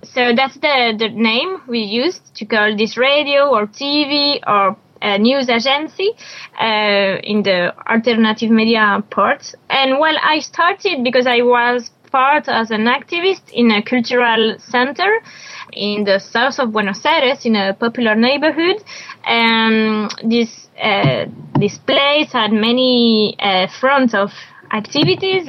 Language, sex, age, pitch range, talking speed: English, female, 20-39, 215-265 Hz, 140 wpm